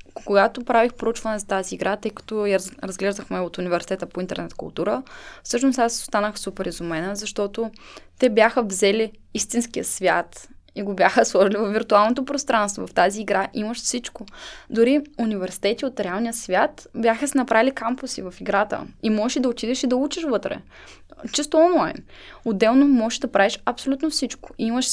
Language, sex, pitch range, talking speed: Bulgarian, female, 195-240 Hz, 155 wpm